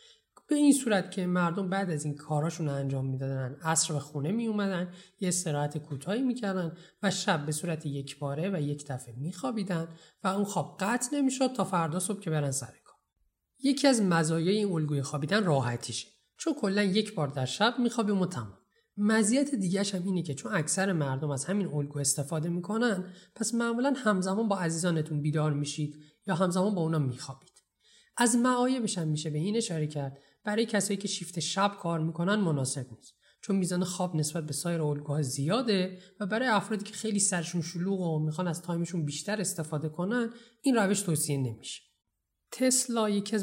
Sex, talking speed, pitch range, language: male, 175 wpm, 150-205 Hz, Persian